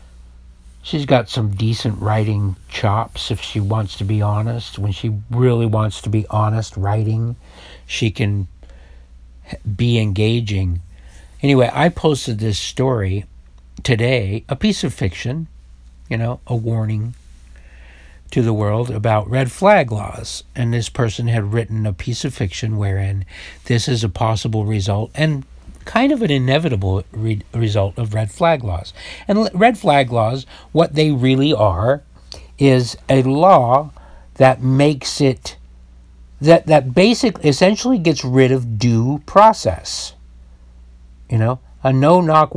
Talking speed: 140 wpm